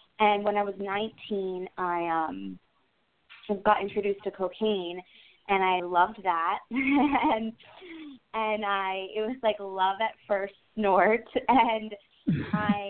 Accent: American